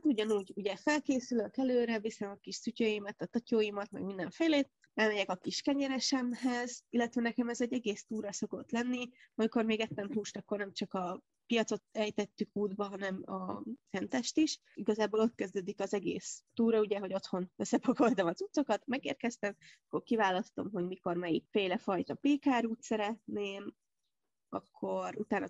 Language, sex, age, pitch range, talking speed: Hungarian, female, 20-39, 195-235 Hz, 150 wpm